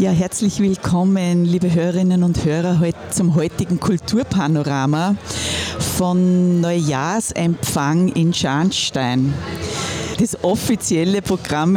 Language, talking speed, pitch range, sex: German, 90 wpm, 160-190 Hz, female